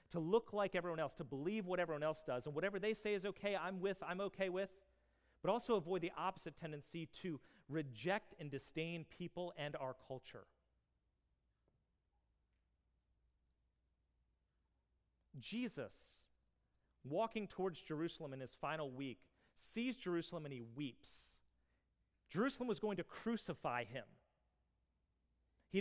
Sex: male